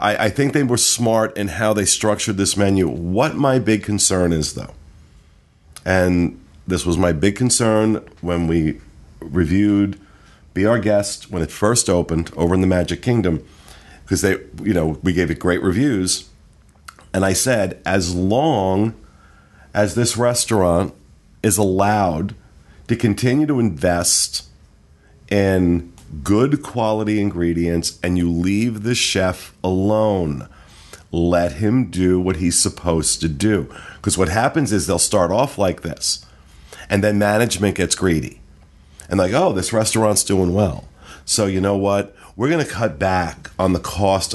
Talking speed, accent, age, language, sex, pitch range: 150 wpm, American, 40-59, English, male, 85-105 Hz